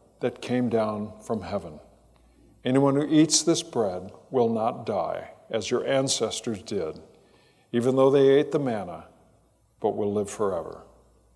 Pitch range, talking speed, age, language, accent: 110-155 Hz, 145 wpm, 60-79, English, American